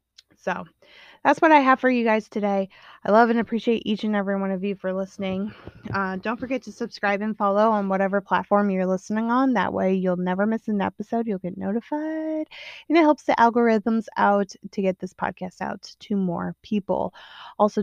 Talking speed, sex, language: 200 wpm, female, English